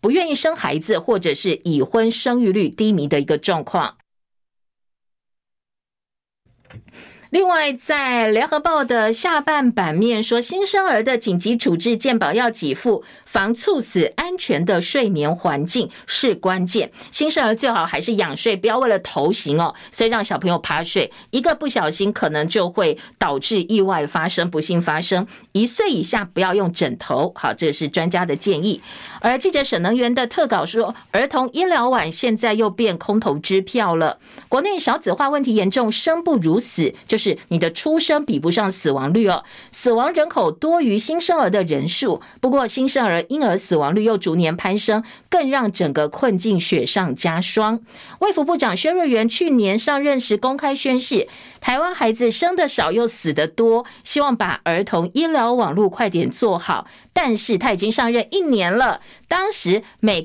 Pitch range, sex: 185-265 Hz, female